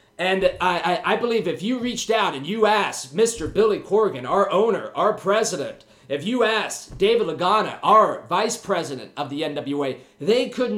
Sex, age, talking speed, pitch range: male, 30-49, 180 wpm, 155-215 Hz